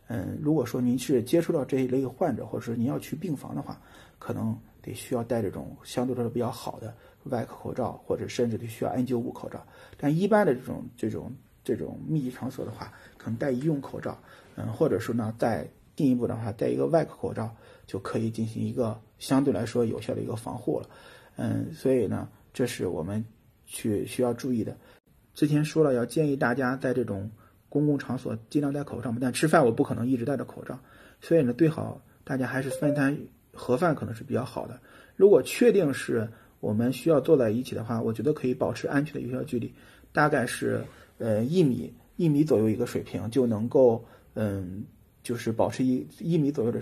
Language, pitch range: Chinese, 115-135 Hz